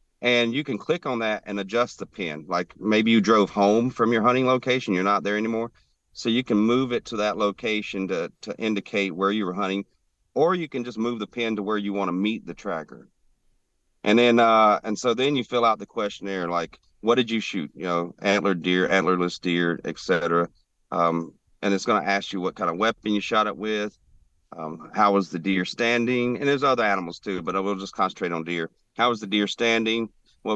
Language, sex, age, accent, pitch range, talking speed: English, male, 40-59, American, 95-120 Hz, 230 wpm